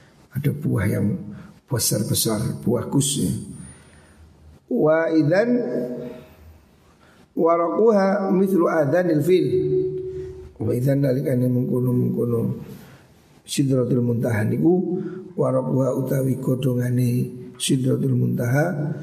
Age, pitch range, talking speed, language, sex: 60-79, 125-160 Hz, 35 wpm, Indonesian, male